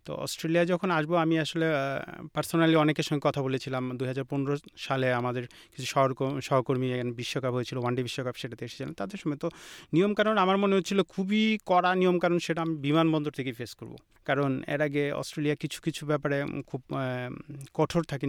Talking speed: 160 wpm